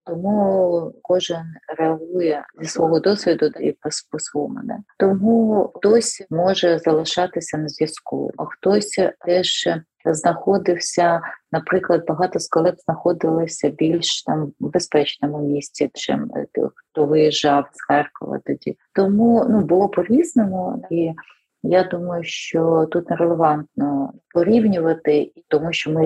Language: Ukrainian